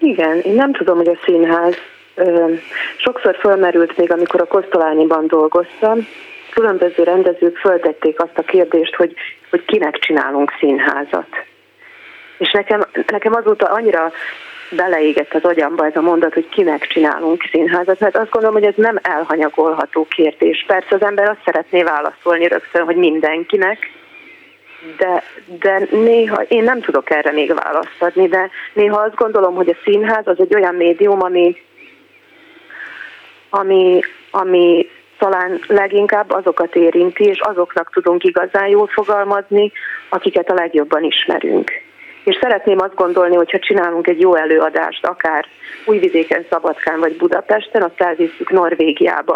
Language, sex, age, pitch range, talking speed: Hungarian, female, 30-49, 170-210 Hz, 135 wpm